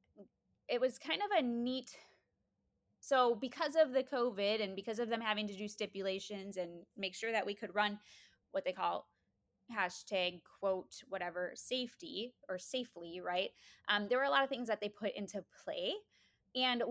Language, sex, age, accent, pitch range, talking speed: English, female, 20-39, American, 200-270 Hz, 175 wpm